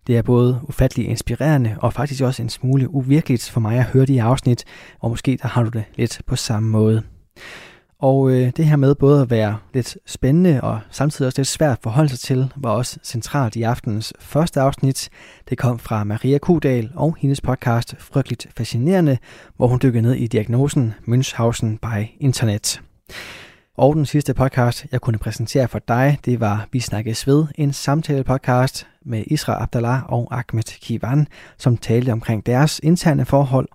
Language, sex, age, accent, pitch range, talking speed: Danish, male, 20-39, native, 115-140 Hz, 180 wpm